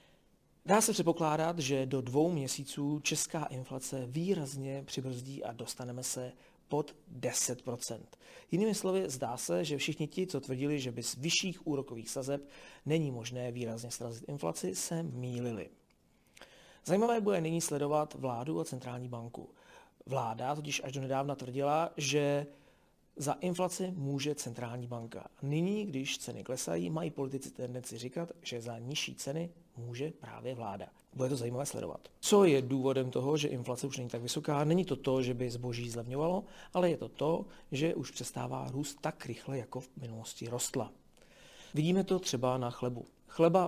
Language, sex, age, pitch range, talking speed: Czech, male, 40-59, 125-155 Hz, 155 wpm